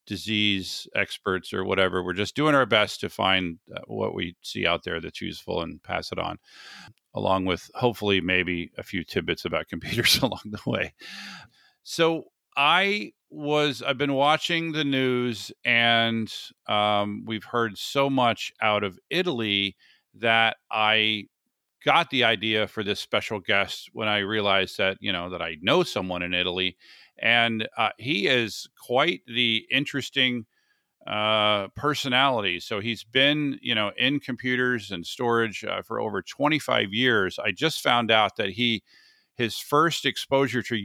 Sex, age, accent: male, 40-59, American